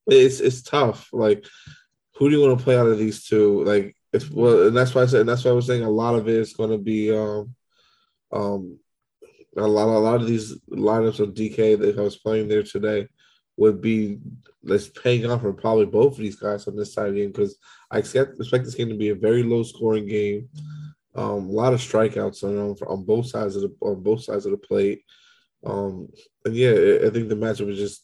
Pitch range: 105-125 Hz